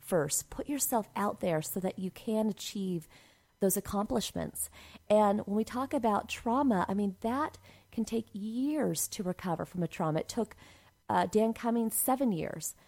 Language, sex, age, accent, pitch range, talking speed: English, female, 40-59, American, 180-225 Hz, 170 wpm